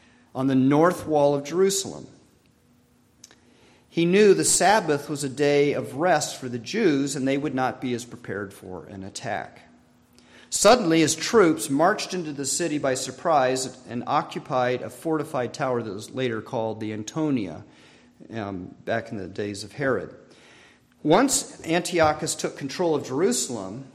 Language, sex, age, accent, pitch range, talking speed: English, male, 40-59, American, 120-155 Hz, 155 wpm